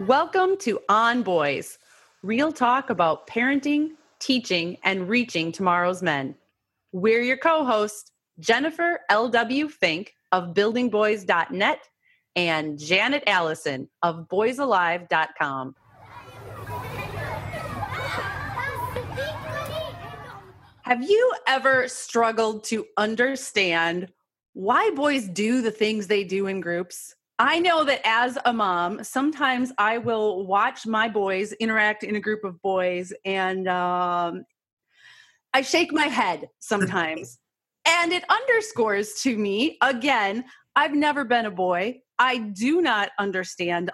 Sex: female